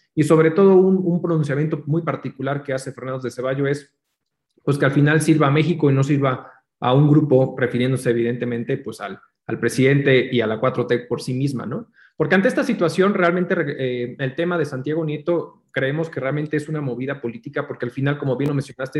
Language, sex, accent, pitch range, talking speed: Spanish, male, Mexican, 135-165 Hz, 210 wpm